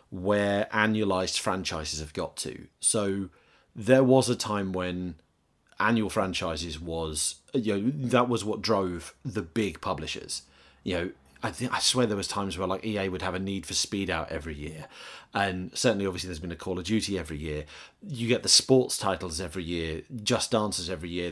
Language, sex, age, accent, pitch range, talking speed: English, male, 30-49, British, 90-120 Hz, 190 wpm